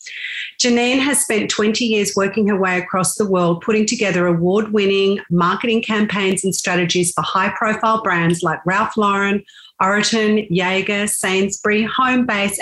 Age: 40-59